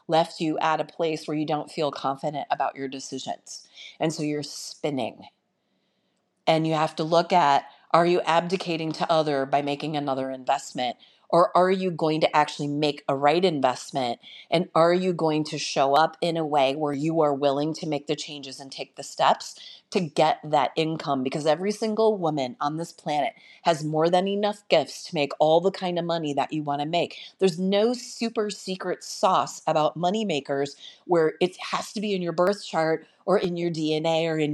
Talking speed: 200 wpm